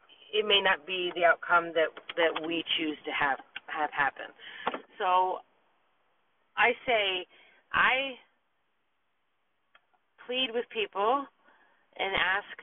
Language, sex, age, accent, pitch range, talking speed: English, female, 30-49, American, 160-210 Hz, 110 wpm